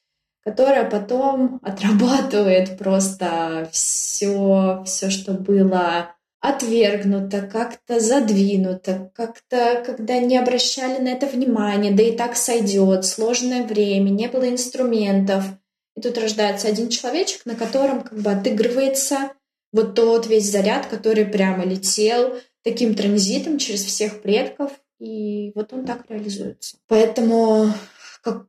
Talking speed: 120 wpm